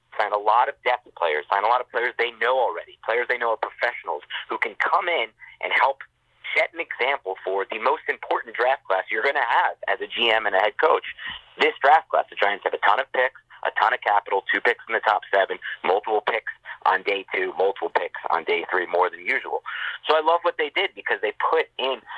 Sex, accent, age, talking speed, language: male, American, 30-49, 240 wpm, English